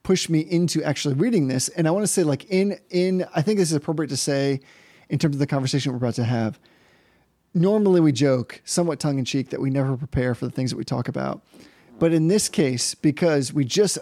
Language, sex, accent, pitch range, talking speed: English, male, American, 135-170 Hz, 235 wpm